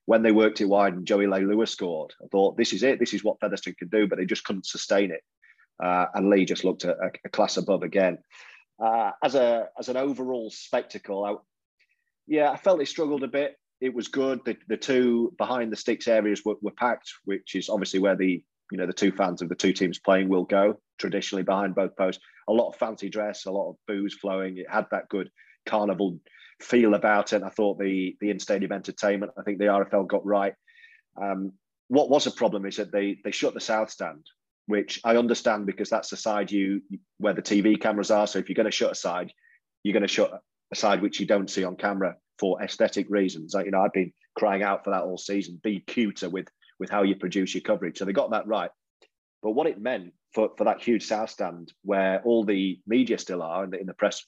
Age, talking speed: 30-49, 235 wpm